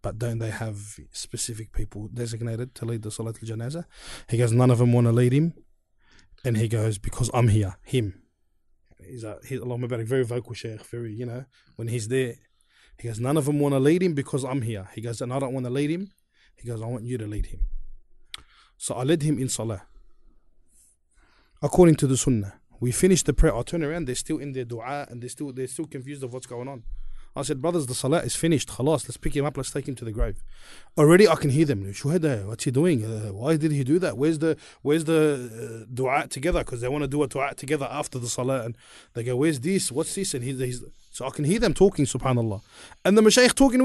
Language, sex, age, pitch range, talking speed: English, male, 20-39, 115-155 Hz, 240 wpm